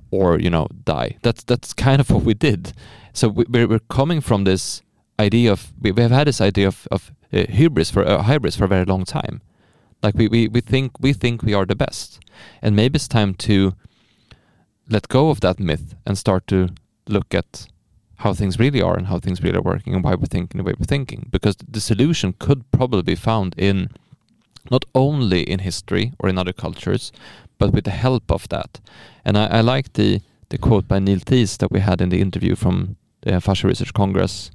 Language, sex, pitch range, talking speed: English, male, 95-120 Hz, 215 wpm